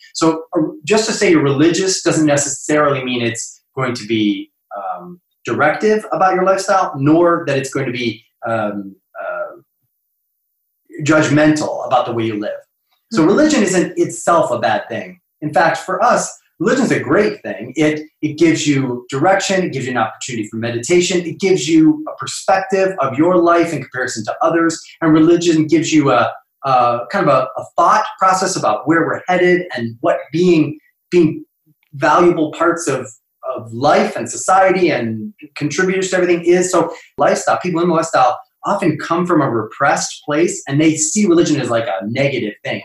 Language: English